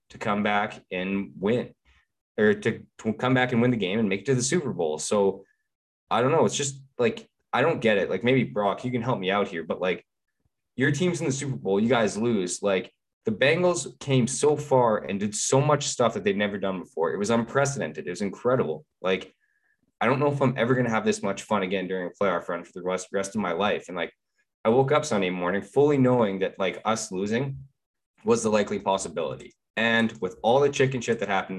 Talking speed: 235 wpm